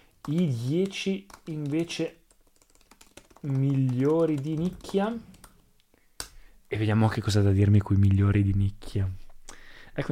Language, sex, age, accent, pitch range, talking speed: Italian, male, 20-39, native, 110-130 Hz, 105 wpm